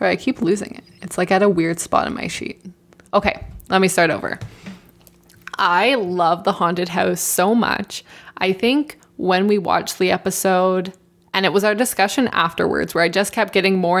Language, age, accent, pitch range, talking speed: English, 20-39, American, 175-205 Hz, 190 wpm